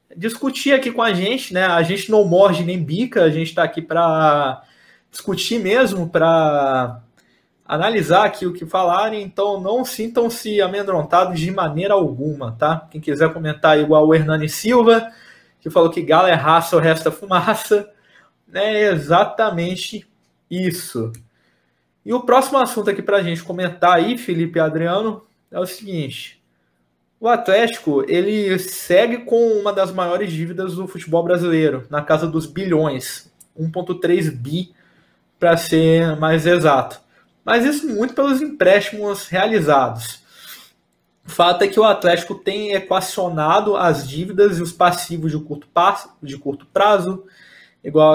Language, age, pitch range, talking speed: Portuguese, 20-39, 155-200 Hz, 145 wpm